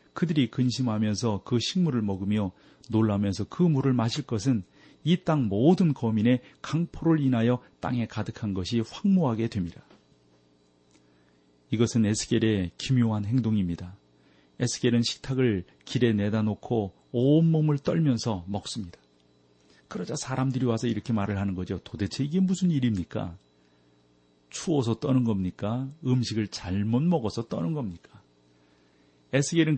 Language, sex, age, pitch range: Korean, male, 40-59, 90-125 Hz